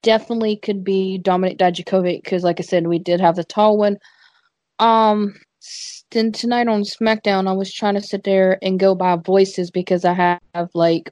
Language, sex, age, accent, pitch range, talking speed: English, female, 20-39, American, 180-210 Hz, 185 wpm